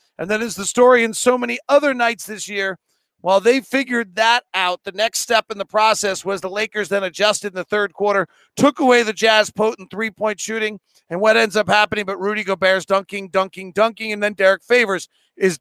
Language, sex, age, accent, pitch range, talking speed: English, male, 40-59, American, 190-225 Hz, 210 wpm